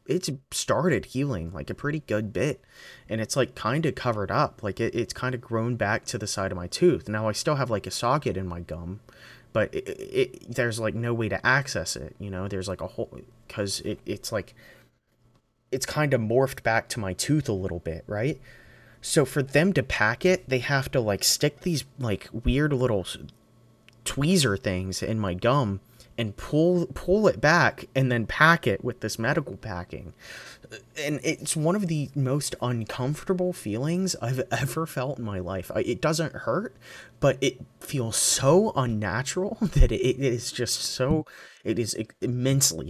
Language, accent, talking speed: English, American, 185 wpm